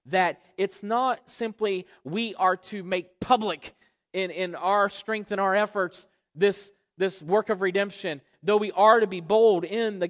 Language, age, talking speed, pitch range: English, 40-59, 170 wpm, 185-245 Hz